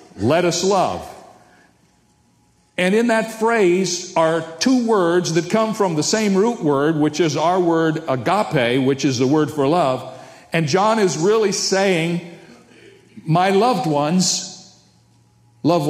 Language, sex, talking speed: English, male, 140 wpm